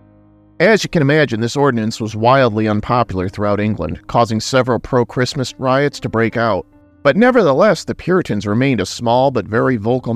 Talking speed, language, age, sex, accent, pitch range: 165 wpm, English, 40-59, male, American, 105-140 Hz